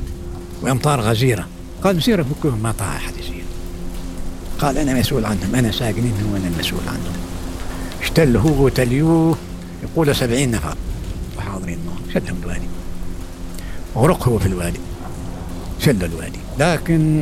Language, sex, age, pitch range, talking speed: Arabic, male, 60-79, 85-135 Hz, 115 wpm